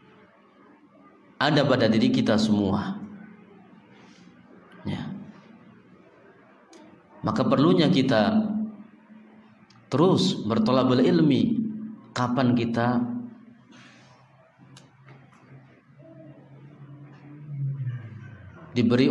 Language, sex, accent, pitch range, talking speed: Indonesian, male, native, 155-220 Hz, 45 wpm